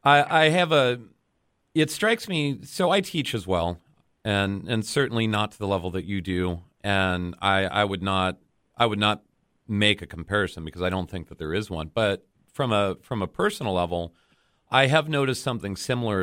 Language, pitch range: English, 90-115 Hz